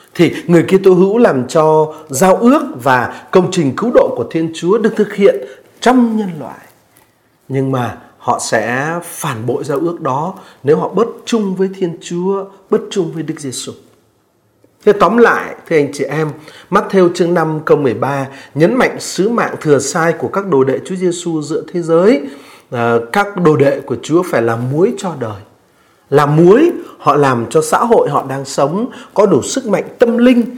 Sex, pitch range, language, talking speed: male, 135-200 Hz, Vietnamese, 190 wpm